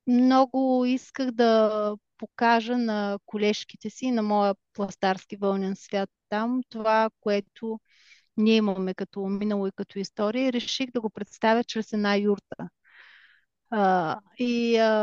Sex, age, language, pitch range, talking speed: female, 30-49, Bulgarian, 210-250 Hz, 120 wpm